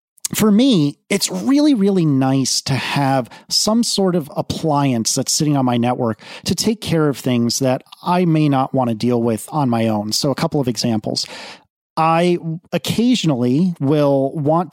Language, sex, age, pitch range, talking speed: English, male, 30-49, 130-165 Hz, 170 wpm